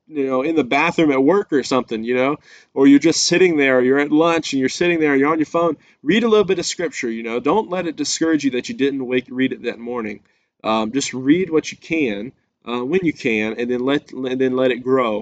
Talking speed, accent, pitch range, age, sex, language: 260 wpm, American, 125-160 Hz, 20-39, male, English